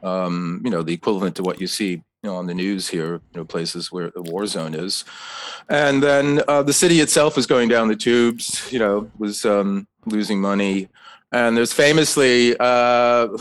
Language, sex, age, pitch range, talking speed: English, male, 30-49, 95-130 Hz, 195 wpm